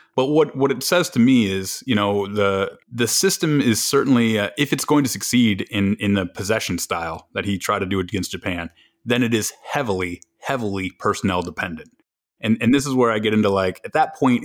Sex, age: male, 30-49